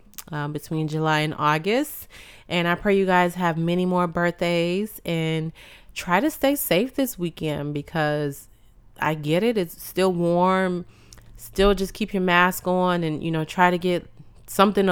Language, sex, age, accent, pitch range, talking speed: English, female, 20-39, American, 160-190 Hz, 165 wpm